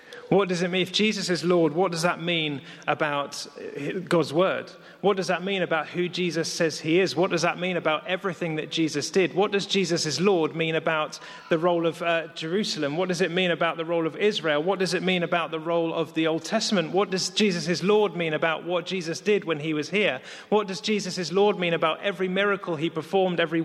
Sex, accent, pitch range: male, British, 165-190 Hz